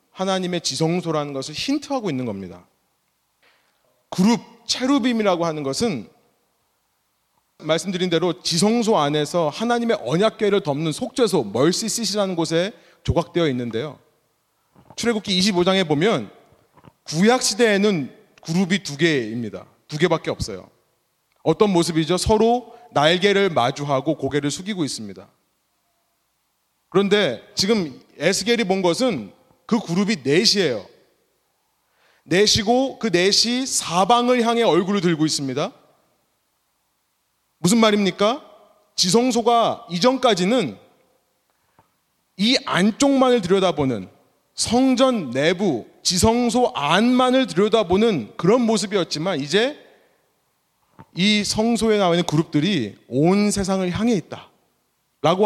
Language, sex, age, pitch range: Korean, male, 30-49, 160-230 Hz